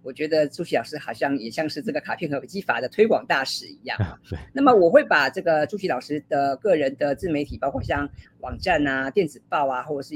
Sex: female